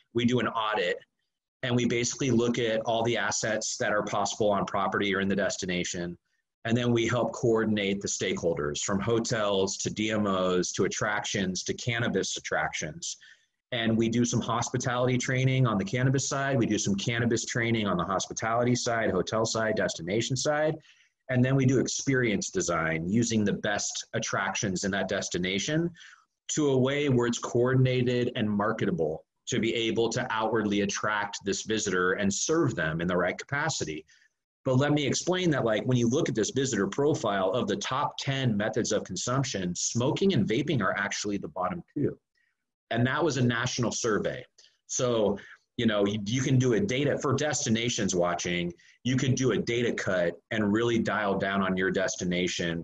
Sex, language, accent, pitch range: male, English, American, 105-130 Hz